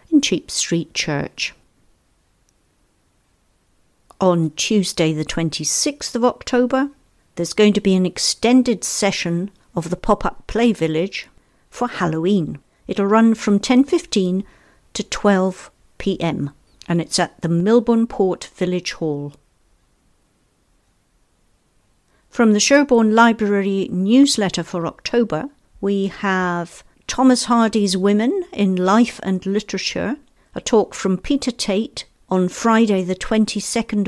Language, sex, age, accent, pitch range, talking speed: English, female, 50-69, British, 180-230 Hz, 110 wpm